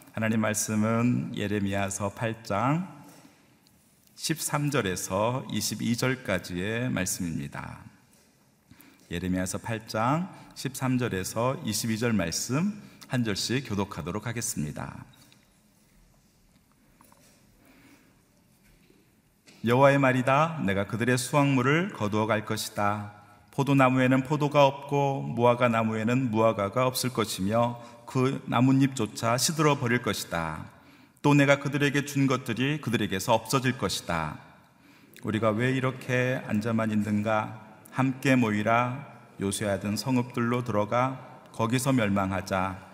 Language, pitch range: Korean, 105-130 Hz